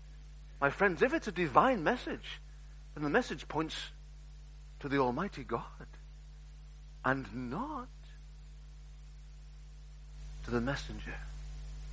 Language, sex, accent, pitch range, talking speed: English, male, British, 145-170 Hz, 100 wpm